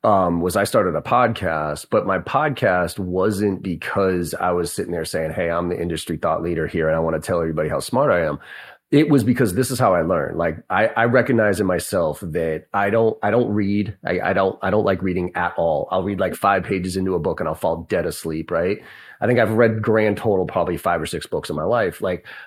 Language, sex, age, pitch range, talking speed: English, male, 30-49, 90-120 Hz, 245 wpm